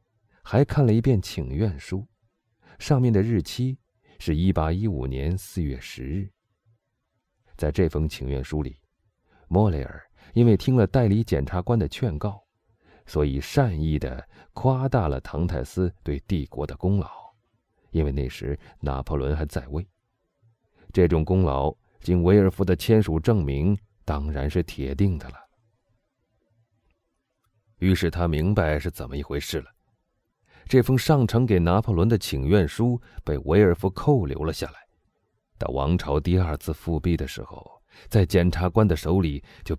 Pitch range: 80-110 Hz